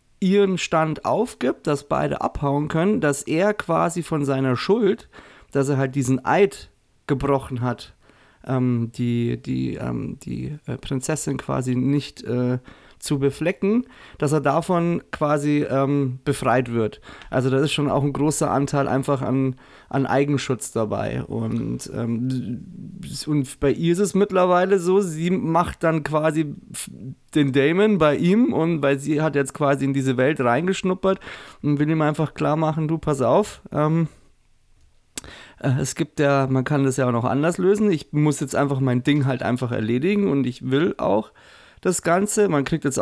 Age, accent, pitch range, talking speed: 30-49, German, 130-165 Hz, 165 wpm